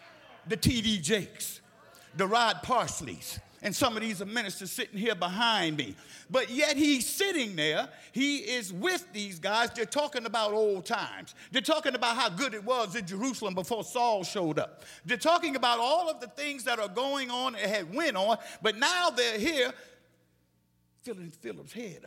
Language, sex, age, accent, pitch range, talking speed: English, male, 50-69, American, 190-290 Hz, 175 wpm